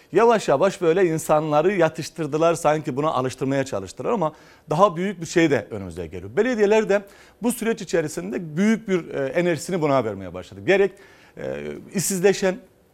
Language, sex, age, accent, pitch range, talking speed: Turkish, male, 40-59, native, 145-195 Hz, 140 wpm